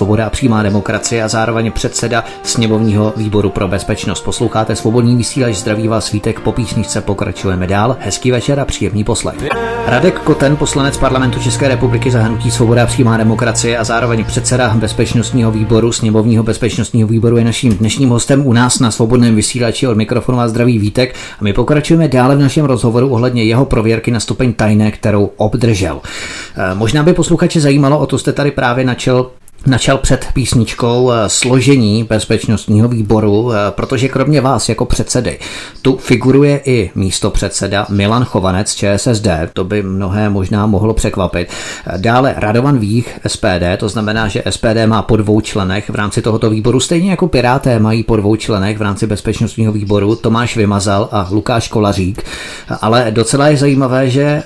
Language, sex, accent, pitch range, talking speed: Czech, male, native, 105-125 Hz, 160 wpm